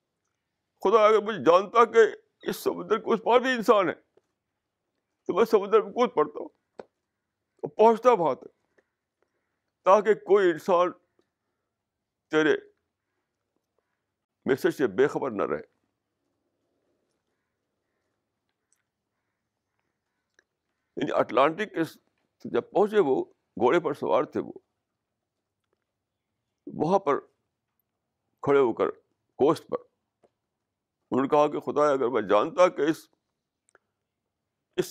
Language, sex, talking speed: Urdu, male, 110 wpm